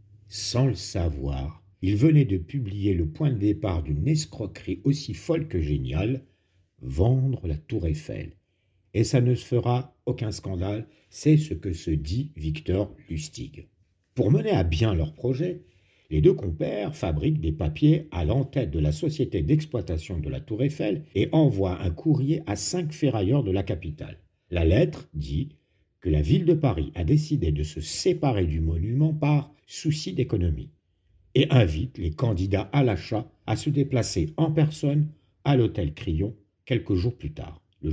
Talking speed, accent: 165 wpm, French